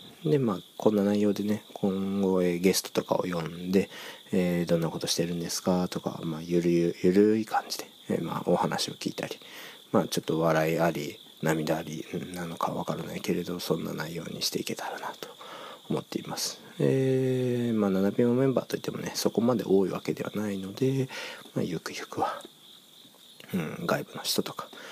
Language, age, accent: English, 40-59, Japanese